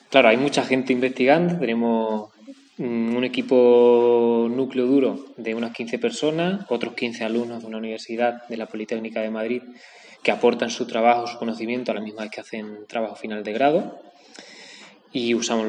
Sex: male